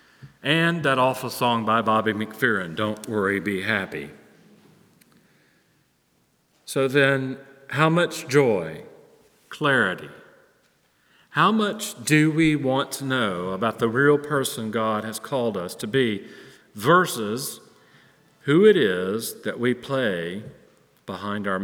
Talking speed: 120 wpm